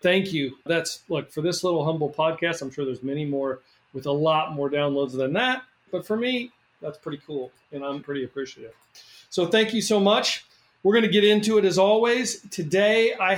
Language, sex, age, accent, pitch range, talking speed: English, male, 40-59, American, 145-195 Hz, 205 wpm